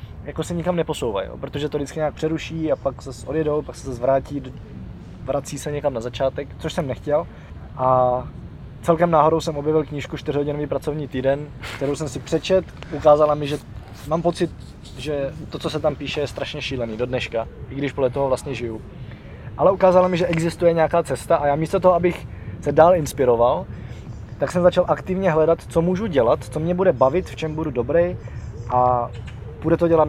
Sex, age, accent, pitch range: male, 20-39, native, 125-150 Hz